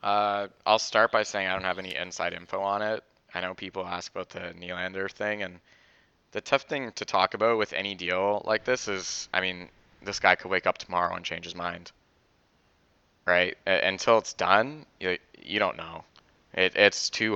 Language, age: English, 20-39